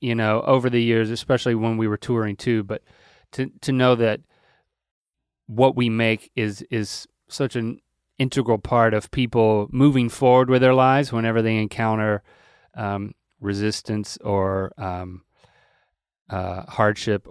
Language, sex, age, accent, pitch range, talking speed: English, male, 30-49, American, 105-135 Hz, 140 wpm